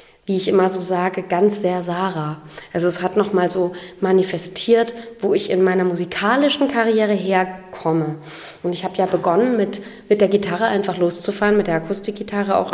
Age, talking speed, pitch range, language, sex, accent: 20-39, 175 wpm, 185-235 Hz, German, female, German